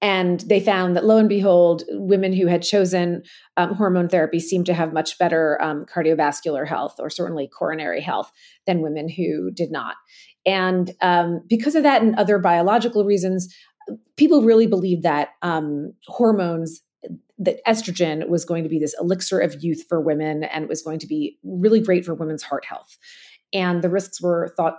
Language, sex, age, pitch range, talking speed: English, female, 30-49, 165-200 Hz, 180 wpm